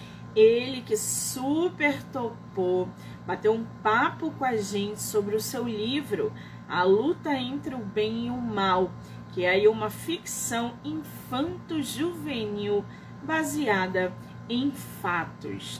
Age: 20-39